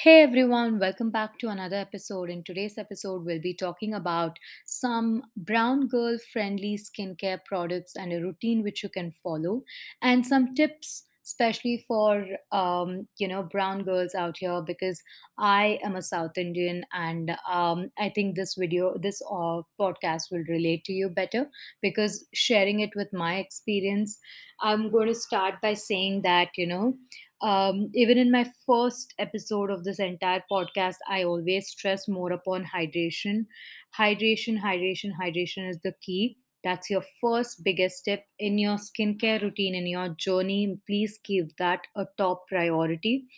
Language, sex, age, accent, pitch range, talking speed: English, female, 20-39, Indian, 185-225 Hz, 160 wpm